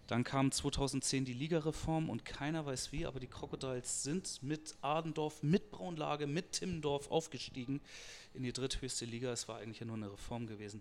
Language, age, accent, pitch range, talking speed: German, 30-49, German, 125-160 Hz, 170 wpm